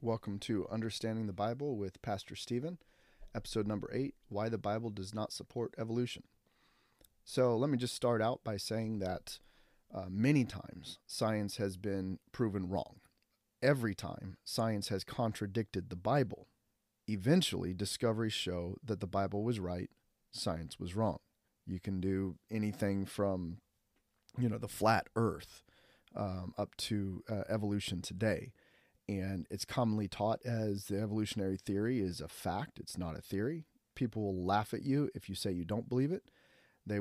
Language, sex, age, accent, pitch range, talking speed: English, male, 30-49, American, 100-115 Hz, 155 wpm